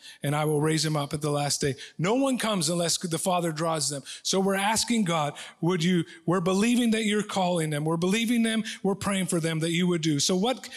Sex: male